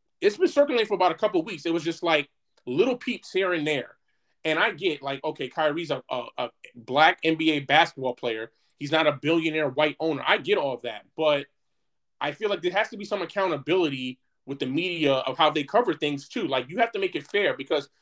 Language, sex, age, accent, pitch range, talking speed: English, male, 20-39, American, 140-175 Hz, 230 wpm